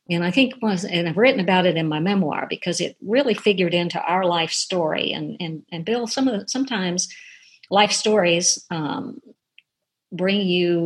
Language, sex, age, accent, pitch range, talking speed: English, female, 50-69, American, 155-185 Hz, 175 wpm